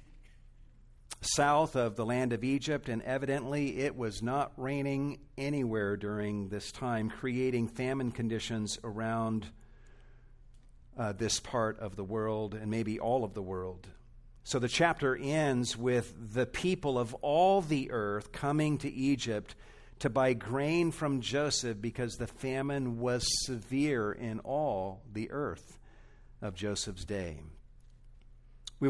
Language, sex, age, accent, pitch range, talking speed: English, male, 50-69, American, 110-135 Hz, 135 wpm